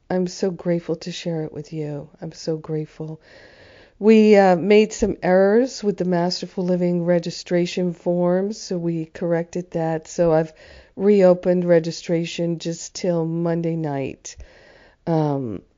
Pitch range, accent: 160-180 Hz, American